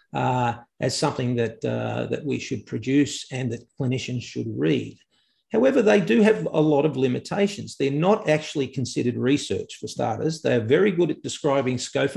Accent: Australian